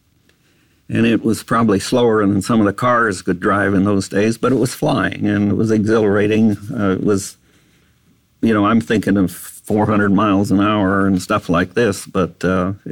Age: 50-69